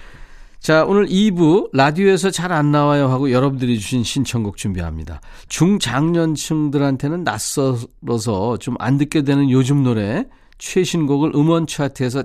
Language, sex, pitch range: Korean, male, 125-165 Hz